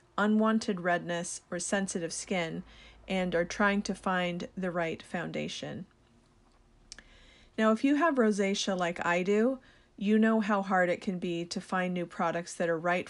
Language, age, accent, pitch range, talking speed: English, 40-59, American, 180-215 Hz, 160 wpm